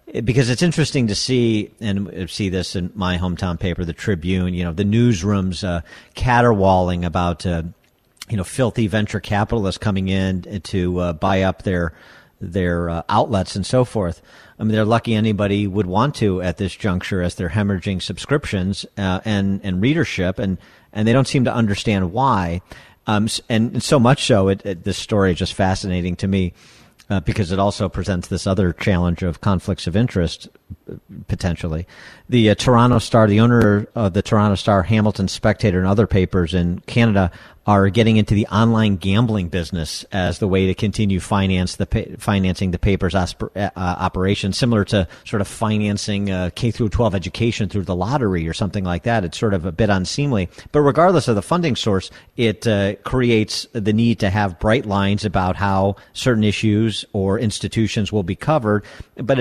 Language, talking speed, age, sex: English, 180 wpm, 50-69, male